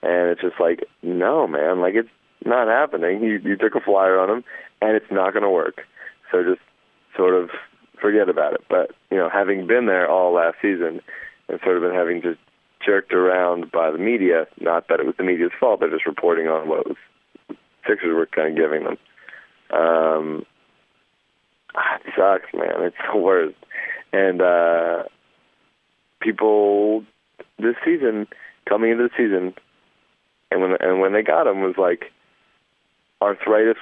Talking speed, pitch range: 170 wpm, 90-110 Hz